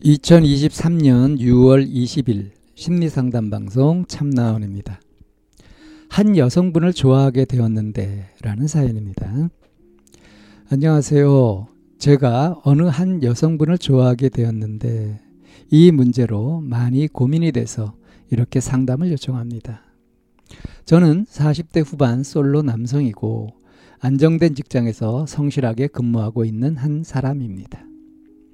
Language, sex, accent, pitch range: Korean, male, native, 115-155 Hz